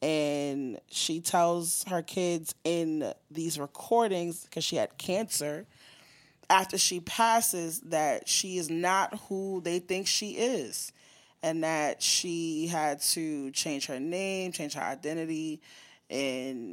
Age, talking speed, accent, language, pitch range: 20-39, 130 wpm, American, English, 150-180 Hz